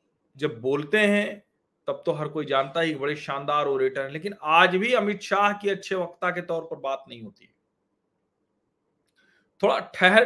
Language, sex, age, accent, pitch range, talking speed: Hindi, male, 40-59, native, 140-205 Hz, 175 wpm